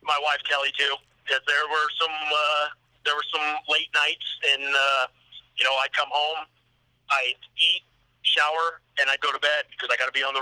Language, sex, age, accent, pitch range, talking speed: English, male, 40-59, American, 125-155 Hz, 205 wpm